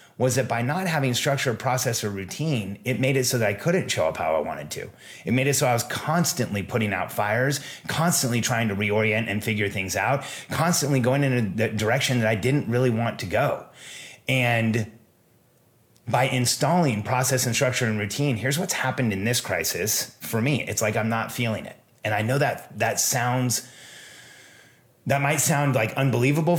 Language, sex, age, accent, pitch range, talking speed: English, male, 30-49, American, 110-135 Hz, 195 wpm